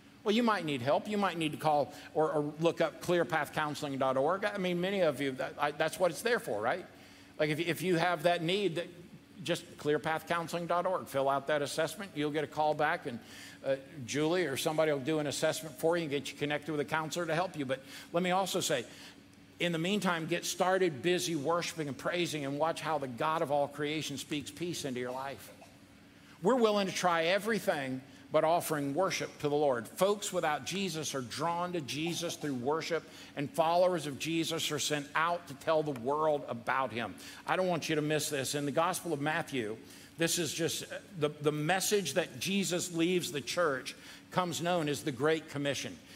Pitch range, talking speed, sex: 145-175 Hz, 200 wpm, male